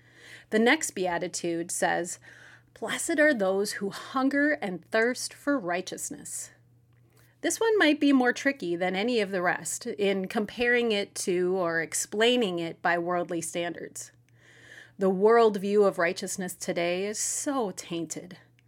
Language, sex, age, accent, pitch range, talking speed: English, female, 30-49, American, 175-230 Hz, 135 wpm